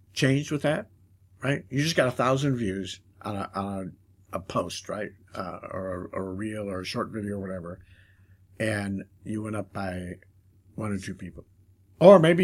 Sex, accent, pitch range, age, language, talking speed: male, American, 95-130 Hz, 60-79, English, 195 wpm